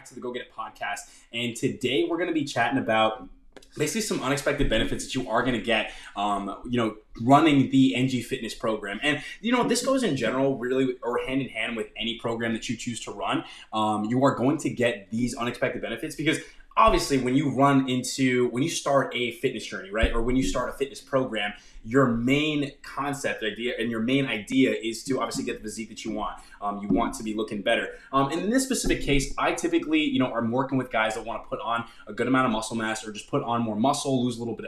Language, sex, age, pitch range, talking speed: English, male, 20-39, 115-135 Hz, 240 wpm